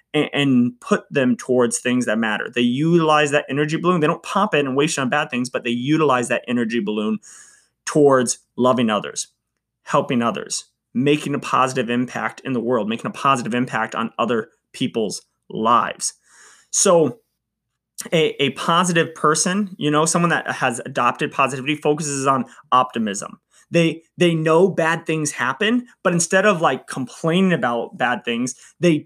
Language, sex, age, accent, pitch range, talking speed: English, male, 20-39, American, 135-175 Hz, 160 wpm